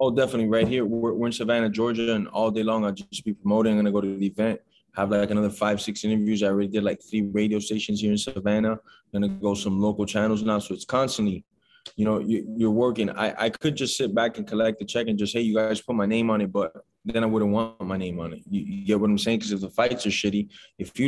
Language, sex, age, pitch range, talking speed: English, male, 20-39, 105-115 Hz, 280 wpm